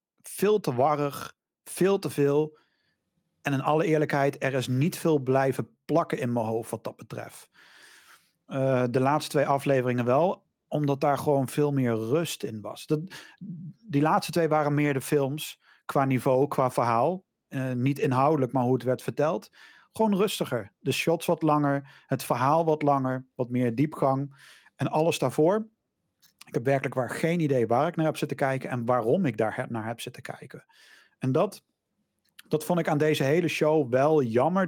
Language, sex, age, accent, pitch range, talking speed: Dutch, male, 40-59, Dutch, 135-160 Hz, 180 wpm